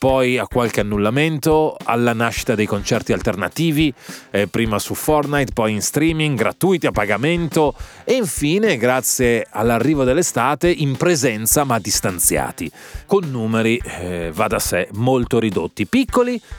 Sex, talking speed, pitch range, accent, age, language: male, 135 wpm, 105-150 Hz, native, 30-49, Italian